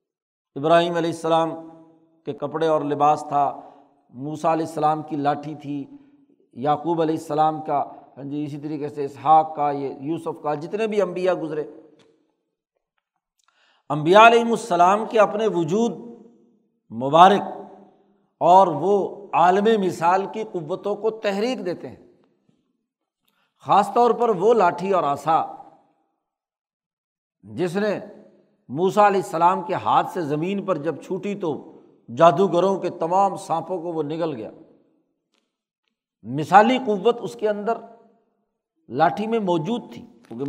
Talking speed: 125 wpm